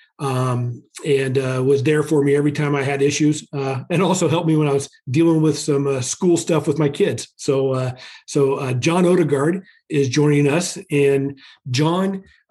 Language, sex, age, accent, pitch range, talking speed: English, male, 40-59, American, 135-150 Hz, 190 wpm